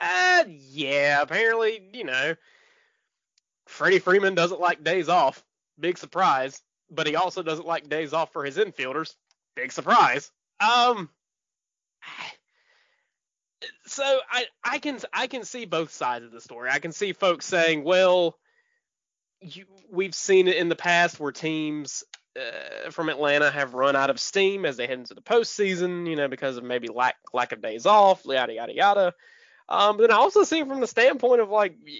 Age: 20-39